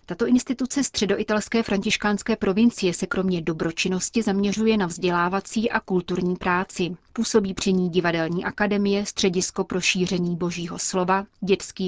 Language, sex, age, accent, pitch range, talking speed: Czech, female, 30-49, native, 180-210 Hz, 125 wpm